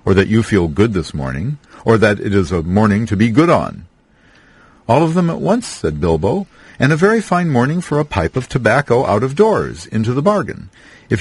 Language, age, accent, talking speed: English, 50-69, American, 220 wpm